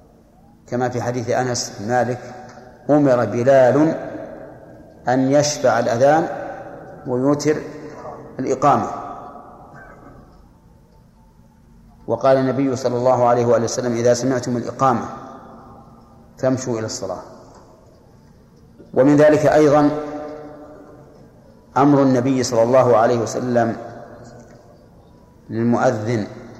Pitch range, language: 120-140 Hz, Arabic